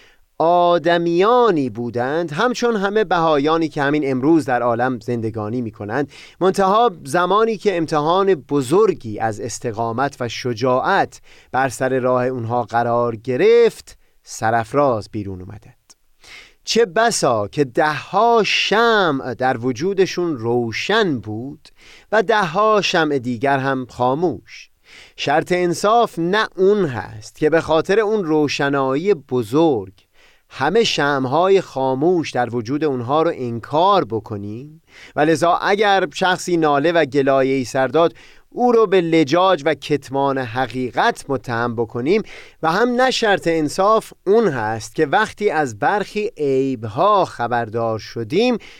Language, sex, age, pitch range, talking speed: Persian, male, 30-49, 120-180 Hz, 120 wpm